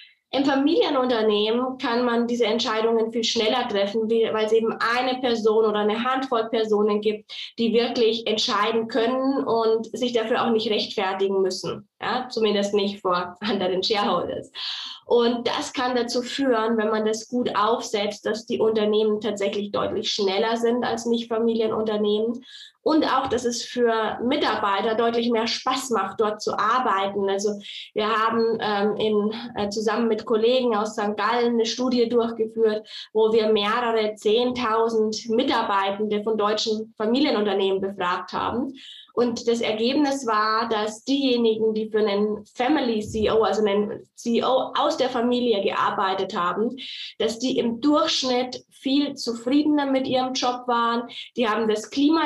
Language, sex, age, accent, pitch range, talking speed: German, female, 20-39, German, 215-245 Hz, 145 wpm